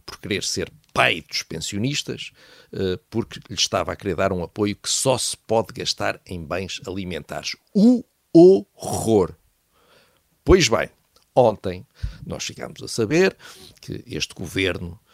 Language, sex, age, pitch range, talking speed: Portuguese, male, 50-69, 100-160 Hz, 135 wpm